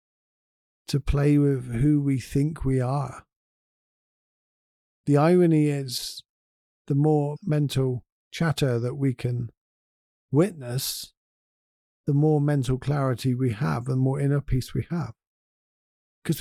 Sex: male